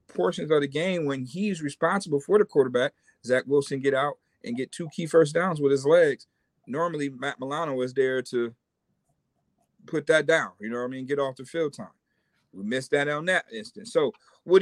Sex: male